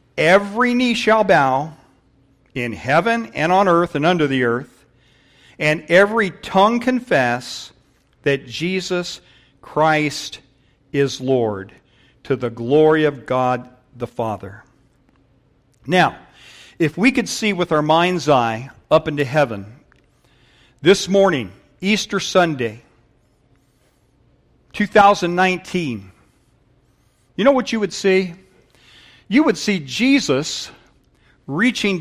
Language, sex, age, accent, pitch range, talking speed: English, male, 50-69, American, 125-190 Hz, 105 wpm